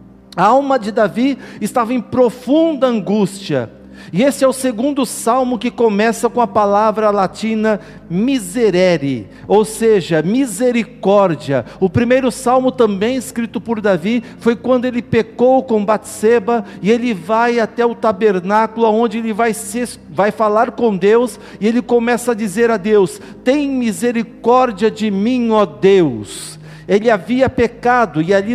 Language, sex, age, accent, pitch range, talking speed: Portuguese, male, 50-69, Brazilian, 190-240 Hz, 145 wpm